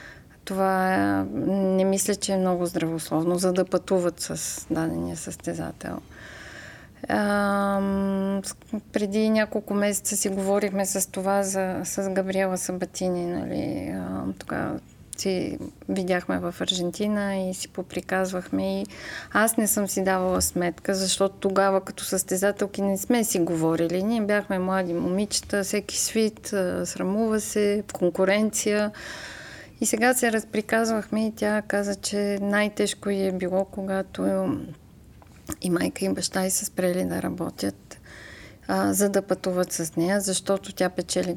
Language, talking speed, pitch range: Bulgarian, 125 wpm, 175-200 Hz